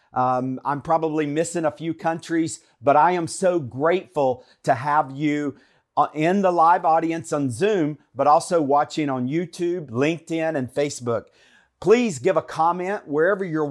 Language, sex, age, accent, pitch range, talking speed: English, male, 40-59, American, 140-180 Hz, 155 wpm